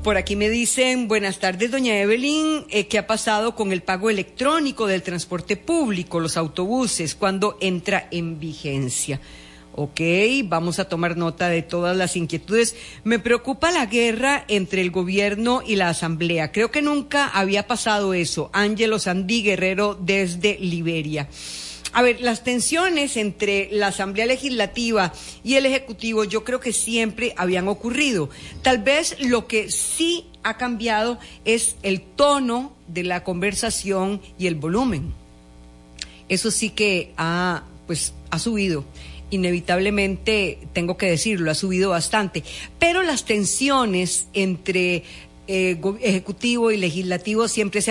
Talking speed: 140 wpm